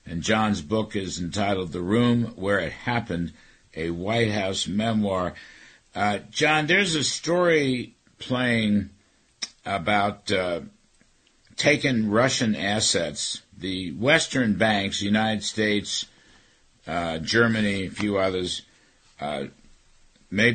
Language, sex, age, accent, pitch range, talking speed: English, male, 60-79, American, 85-110 Hz, 110 wpm